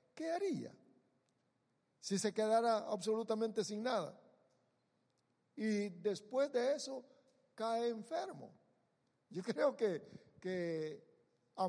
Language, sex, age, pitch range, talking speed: English, male, 60-79, 165-225 Hz, 100 wpm